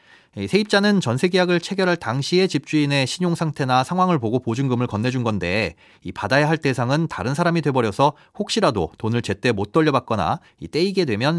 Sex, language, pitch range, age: male, Korean, 110-170 Hz, 30-49